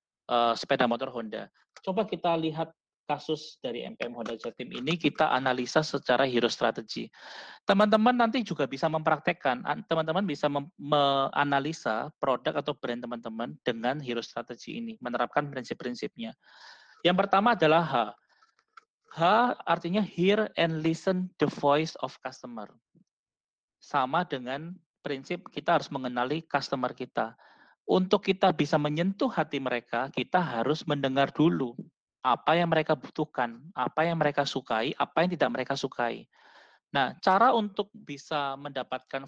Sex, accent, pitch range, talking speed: male, native, 125-170 Hz, 130 wpm